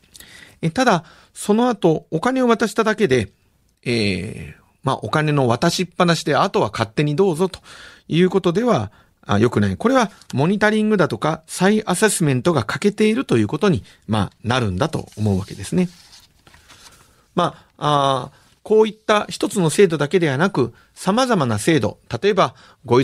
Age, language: 40-59, Japanese